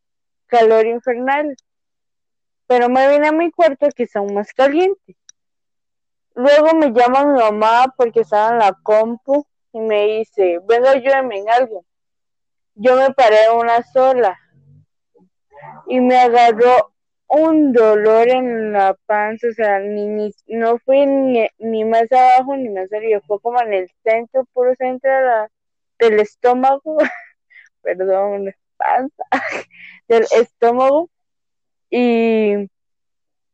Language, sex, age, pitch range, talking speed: Spanish, female, 20-39, 210-265 Hz, 130 wpm